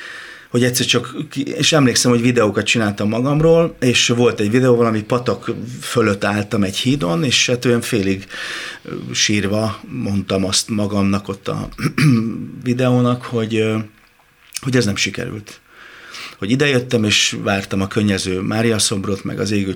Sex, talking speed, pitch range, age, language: male, 135 wpm, 100-120 Hz, 30-49, Hungarian